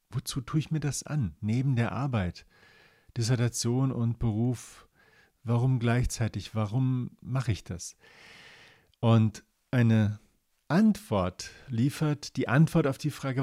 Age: 50-69